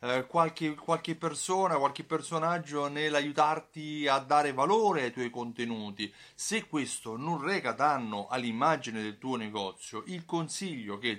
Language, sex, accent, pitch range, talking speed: Italian, male, native, 120-165 Hz, 130 wpm